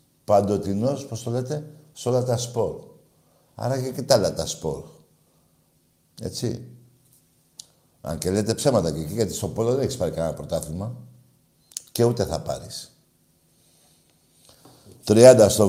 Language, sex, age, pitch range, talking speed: Greek, male, 60-79, 95-130 Hz, 130 wpm